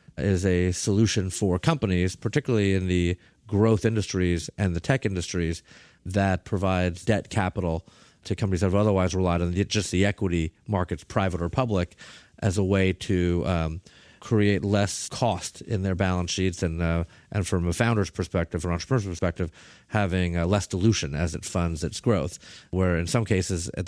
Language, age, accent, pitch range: English, 30-49, American, 85-105 Hz